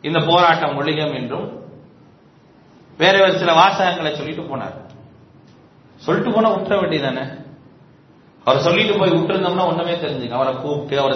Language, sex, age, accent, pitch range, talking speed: English, male, 40-59, Indian, 150-210 Hz, 80 wpm